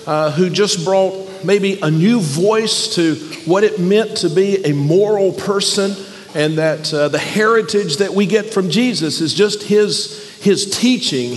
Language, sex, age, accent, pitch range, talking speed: English, male, 50-69, American, 165-210 Hz, 170 wpm